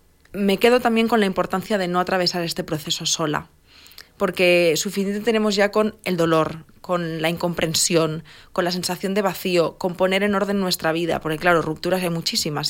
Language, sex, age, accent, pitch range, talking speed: Spanish, female, 20-39, Spanish, 165-195 Hz, 180 wpm